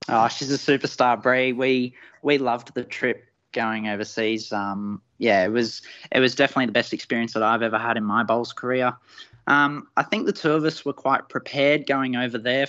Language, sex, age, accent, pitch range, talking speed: English, male, 20-39, Australian, 115-130 Hz, 205 wpm